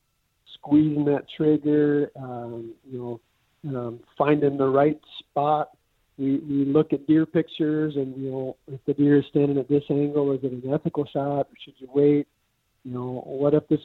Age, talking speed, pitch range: 50-69, 180 wpm, 130-150 Hz